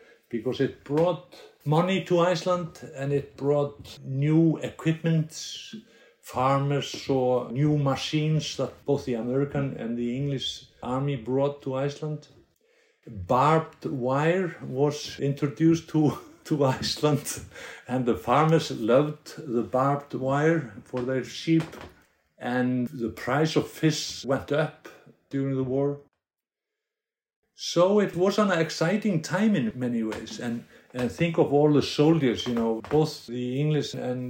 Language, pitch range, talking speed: English, 130-165 Hz, 130 wpm